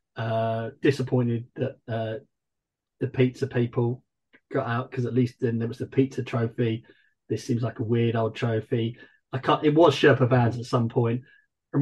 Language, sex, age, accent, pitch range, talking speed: English, male, 30-49, British, 120-140 Hz, 180 wpm